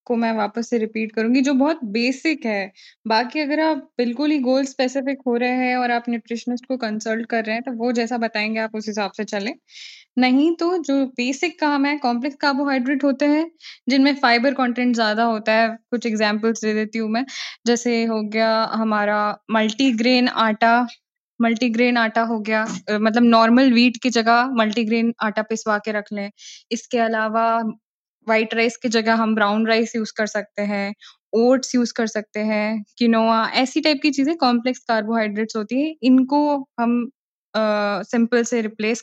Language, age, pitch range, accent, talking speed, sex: Hindi, 10-29, 220-270 Hz, native, 175 wpm, female